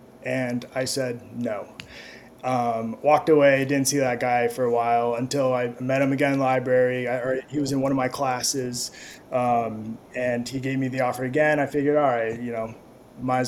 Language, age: English, 20-39